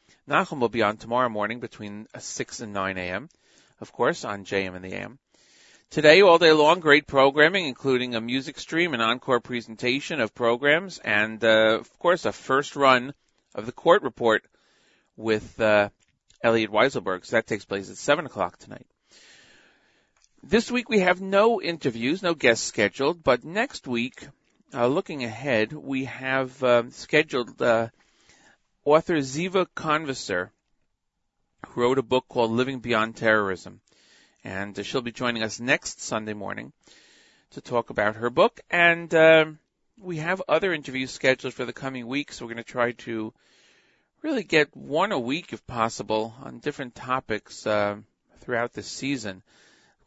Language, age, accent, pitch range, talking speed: English, 40-59, American, 110-145 Hz, 160 wpm